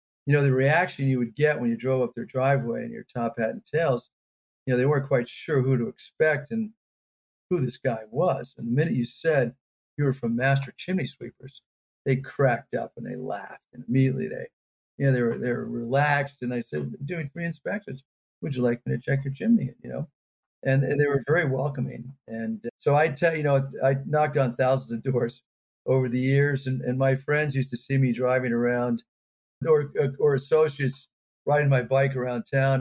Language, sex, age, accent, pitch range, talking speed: English, male, 50-69, American, 125-150 Hz, 210 wpm